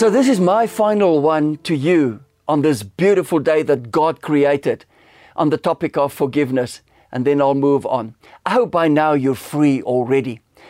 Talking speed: 180 wpm